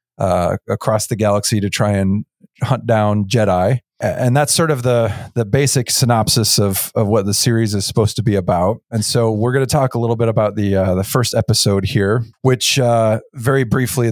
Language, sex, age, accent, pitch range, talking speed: English, male, 40-59, American, 105-120 Hz, 205 wpm